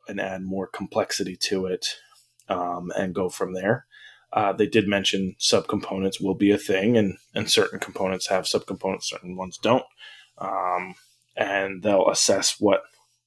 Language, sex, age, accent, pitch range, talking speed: English, male, 20-39, American, 100-125 Hz, 155 wpm